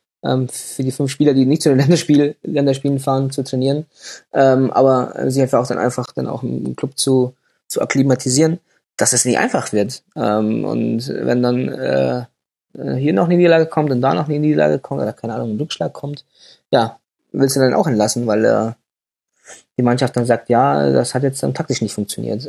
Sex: male